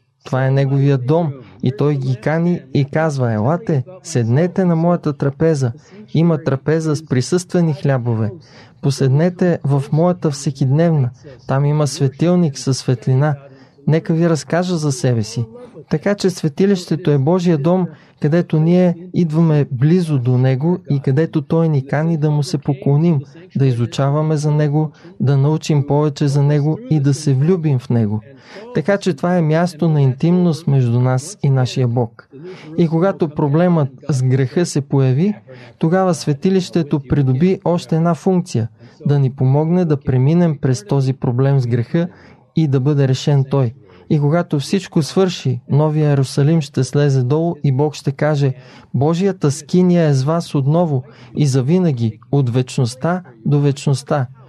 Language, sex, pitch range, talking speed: Bulgarian, male, 135-165 Hz, 150 wpm